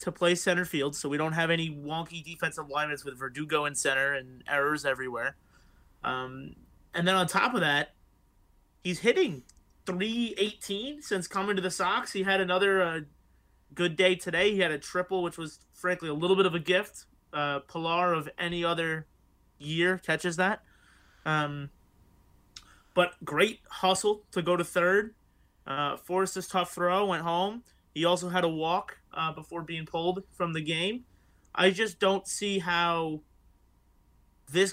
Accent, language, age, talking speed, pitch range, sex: American, English, 30-49, 160 wpm, 150-185 Hz, male